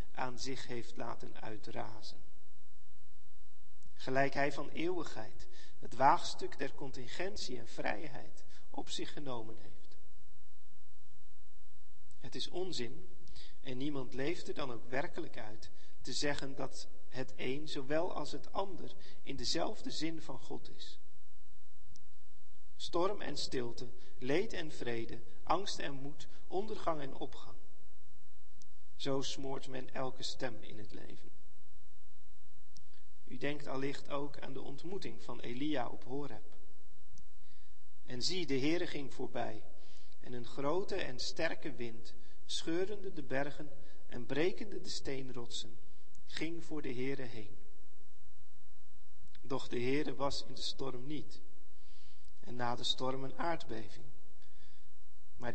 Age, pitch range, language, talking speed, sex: 40-59, 100-135 Hz, Dutch, 125 wpm, male